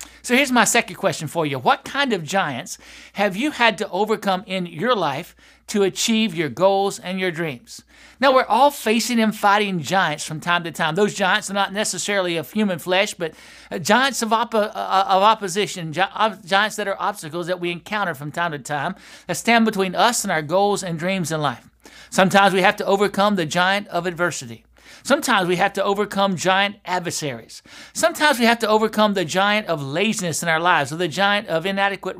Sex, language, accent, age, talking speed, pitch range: male, English, American, 60-79, 195 wpm, 170-210 Hz